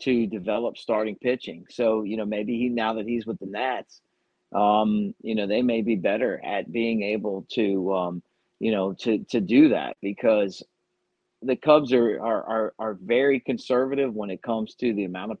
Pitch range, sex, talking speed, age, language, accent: 110-130 Hz, male, 190 wpm, 50-69, English, American